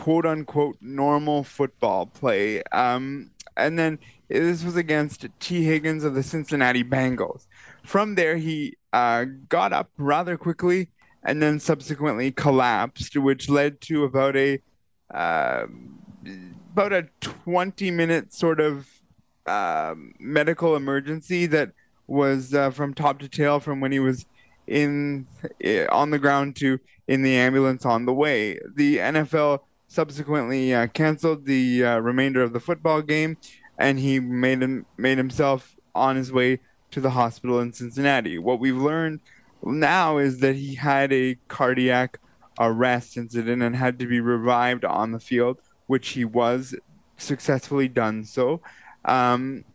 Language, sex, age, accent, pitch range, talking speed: English, male, 20-39, American, 125-155 Hz, 145 wpm